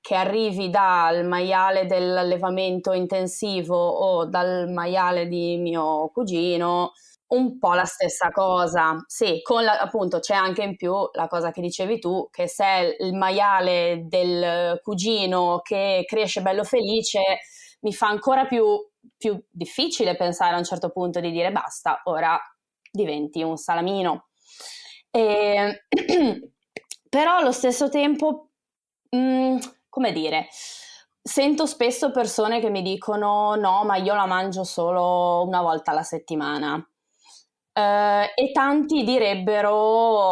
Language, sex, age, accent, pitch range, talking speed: Italian, female, 20-39, native, 175-230 Hz, 120 wpm